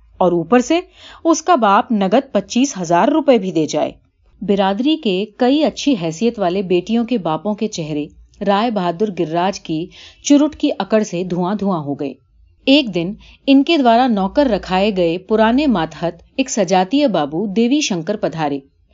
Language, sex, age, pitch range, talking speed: Urdu, female, 40-59, 170-250 Hz, 155 wpm